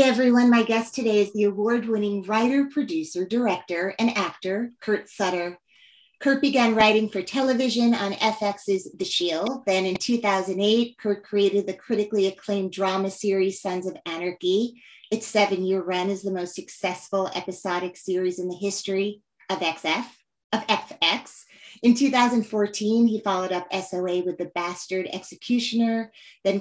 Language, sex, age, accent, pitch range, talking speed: English, female, 30-49, American, 180-225 Hz, 145 wpm